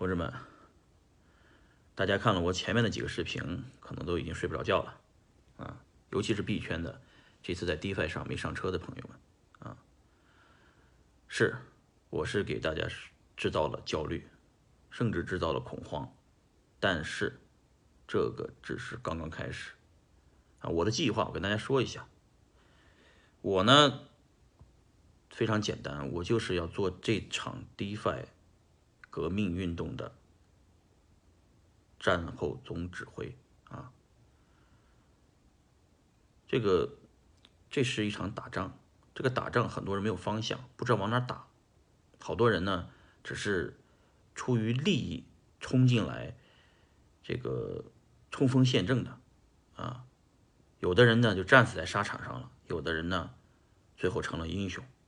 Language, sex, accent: Chinese, male, native